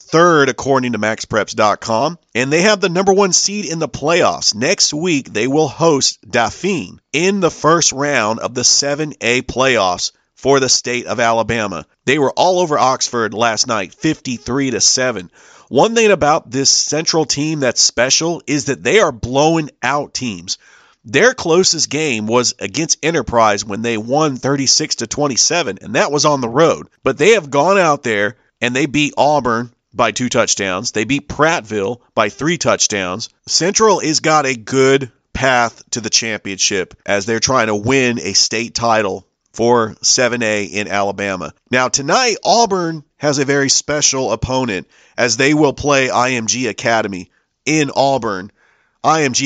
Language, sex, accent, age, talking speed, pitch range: English, male, American, 40-59, 160 wpm, 115-150 Hz